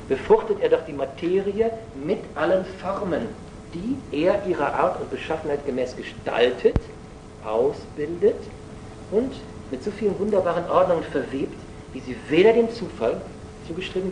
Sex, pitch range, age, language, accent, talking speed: male, 130-195 Hz, 50-69, German, German, 130 wpm